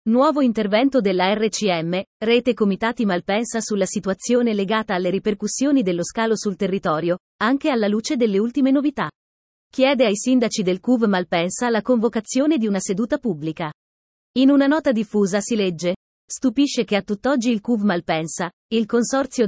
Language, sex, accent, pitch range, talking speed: Italian, female, native, 190-245 Hz, 150 wpm